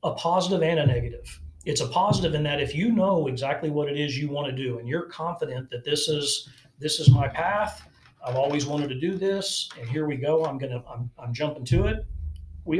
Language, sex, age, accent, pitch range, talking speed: English, male, 40-59, American, 125-150 Hz, 230 wpm